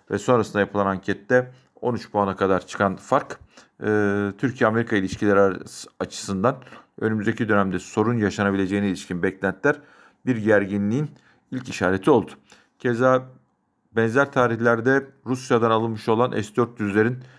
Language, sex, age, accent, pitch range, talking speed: Turkish, male, 50-69, native, 100-120 Hz, 105 wpm